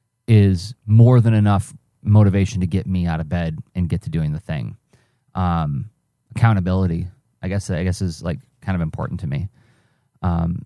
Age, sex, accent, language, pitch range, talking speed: 30-49, male, American, English, 95-125 Hz, 170 wpm